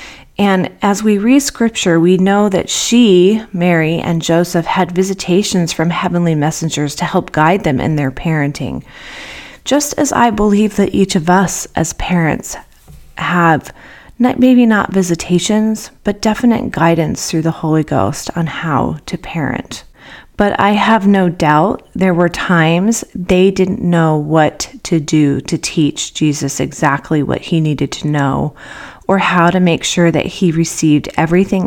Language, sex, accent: English, female, American